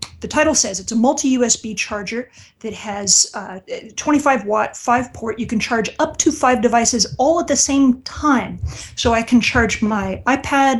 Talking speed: 180 wpm